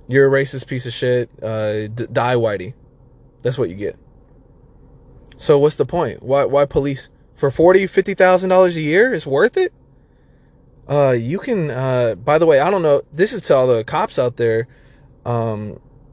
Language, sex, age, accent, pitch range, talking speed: English, male, 20-39, American, 110-135 Hz, 185 wpm